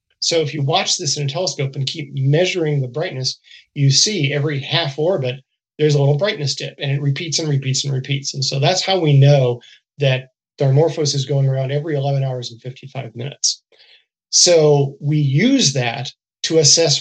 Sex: male